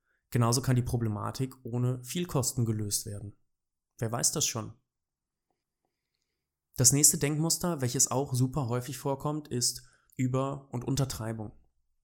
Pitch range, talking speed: 115-140 Hz, 125 wpm